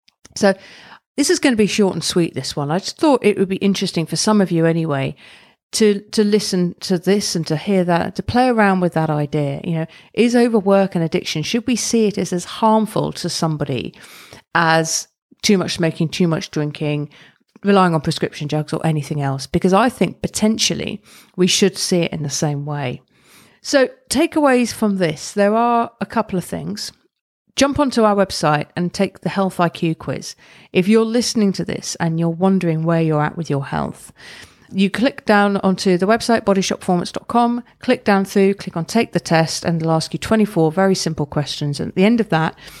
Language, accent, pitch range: English, British, 165-210 Hz